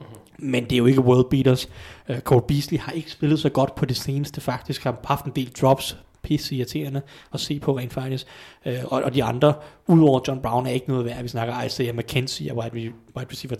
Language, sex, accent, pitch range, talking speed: Danish, male, native, 125-155 Hz, 215 wpm